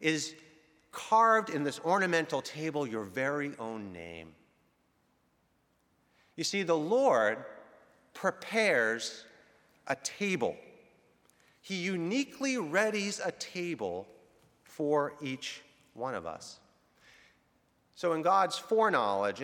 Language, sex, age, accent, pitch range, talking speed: English, male, 40-59, American, 125-205 Hz, 95 wpm